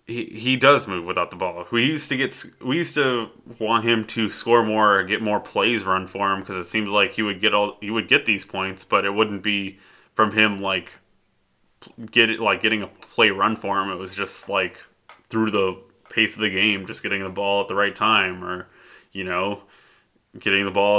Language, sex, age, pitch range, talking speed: English, male, 20-39, 95-115 Hz, 225 wpm